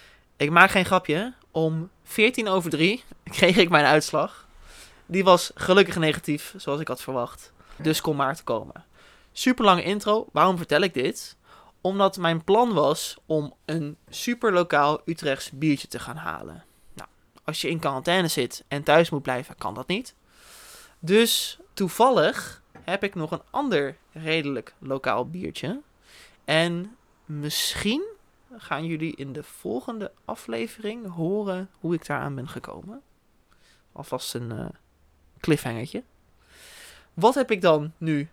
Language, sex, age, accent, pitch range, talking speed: Dutch, male, 20-39, Dutch, 145-190 Hz, 145 wpm